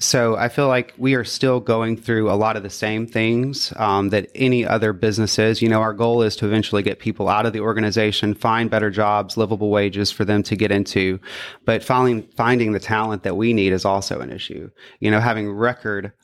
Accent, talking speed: American, 215 wpm